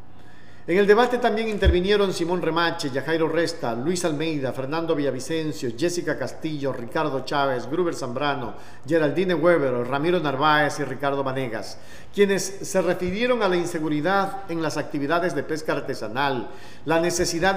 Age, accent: 50-69, Mexican